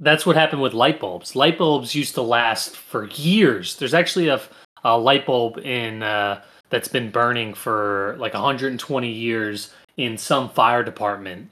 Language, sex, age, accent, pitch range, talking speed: English, male, 30-49, American, 115-160 Hz, 165 wpm